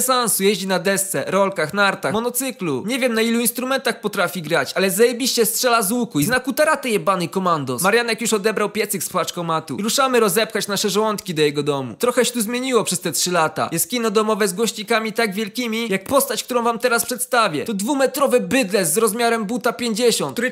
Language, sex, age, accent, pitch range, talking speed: Polish, male, 20-39, native, 205-245 Hz, 195 wpm